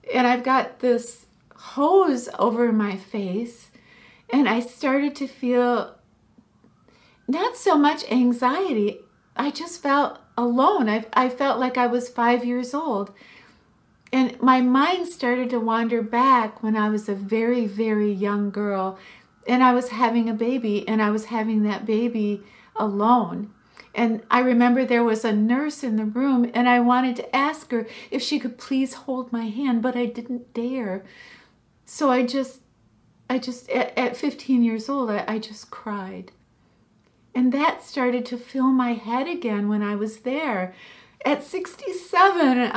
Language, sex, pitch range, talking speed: English, female, 225-265 Hz, 160 wpm